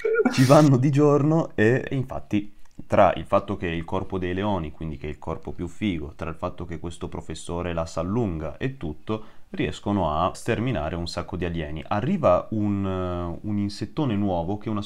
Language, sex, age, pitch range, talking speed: Italian, male, 30-49, 85-105 Hz, 195 wpm